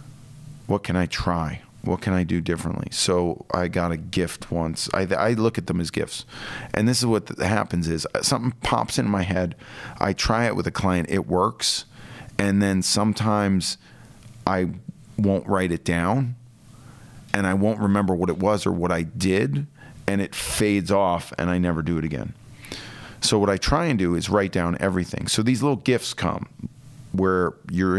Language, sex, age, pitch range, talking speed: English, male, 40-59, 85-115 Hz, 185 wpm